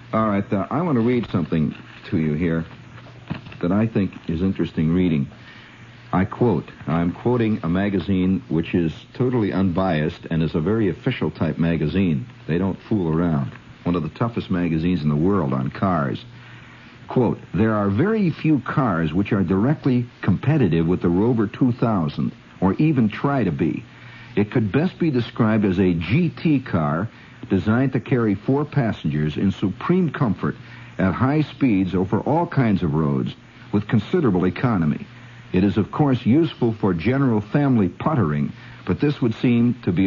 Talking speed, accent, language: 165 wpm, American, English